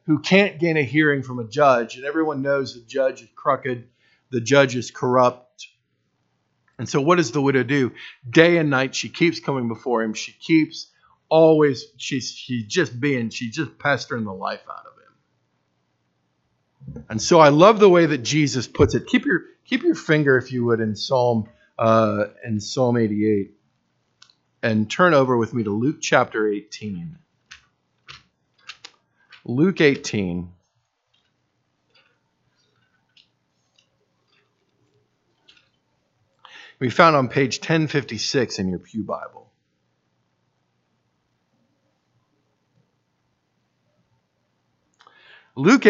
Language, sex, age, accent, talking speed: English, male, 50-69, American, 125 wpm